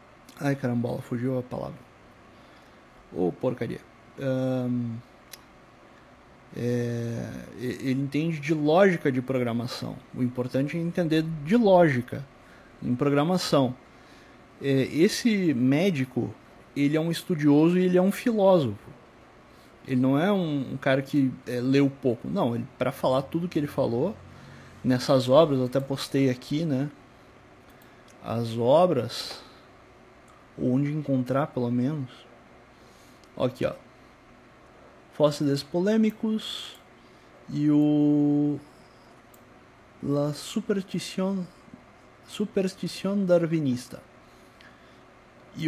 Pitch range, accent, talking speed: 125-165 Hz, Brazilian, 100 wpm